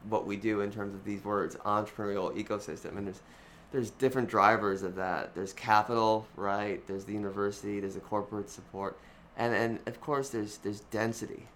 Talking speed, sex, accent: 175 wpm, male, American